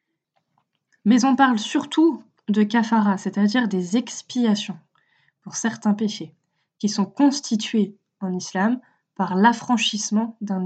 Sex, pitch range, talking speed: female, 195-235 Hz, 115 wpm